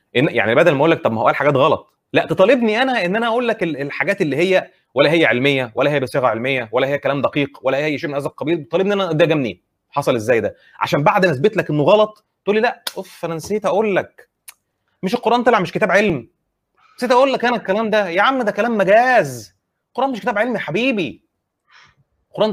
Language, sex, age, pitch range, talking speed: Arabic, male, 30-49, 130-210 Hz, 225 wpm